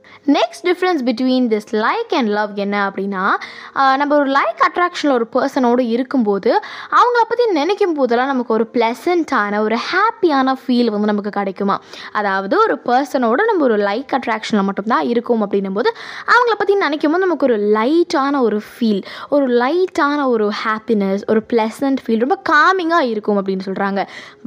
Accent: native